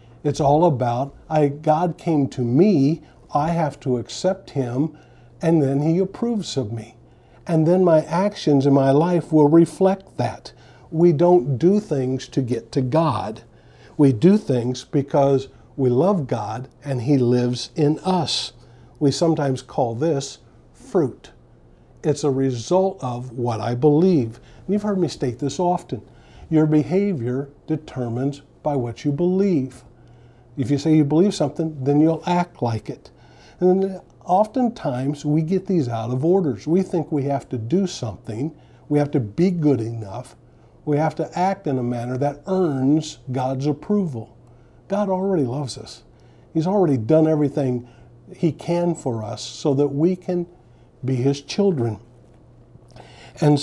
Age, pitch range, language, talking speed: 50-69, 125-165 Hz, English, 150 wpm